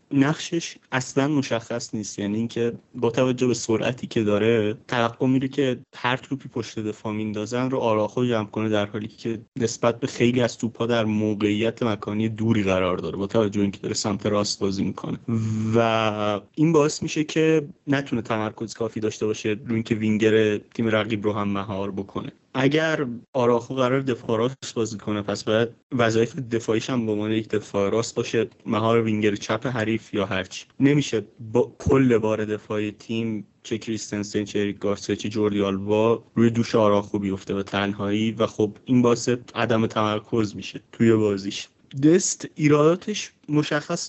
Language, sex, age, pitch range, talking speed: Persian, male, 30-49, 105-125 Hz, 165 wpm